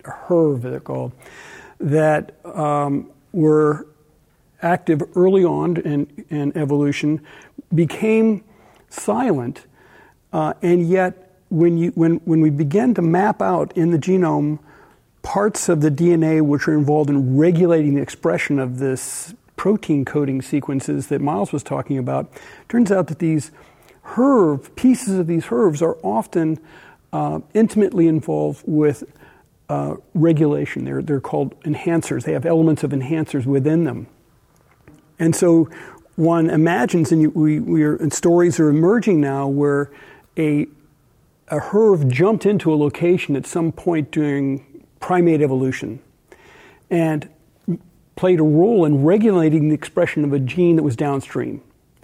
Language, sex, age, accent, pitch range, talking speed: English, male, 50-69, American, 145-175 Hz, 140 wpm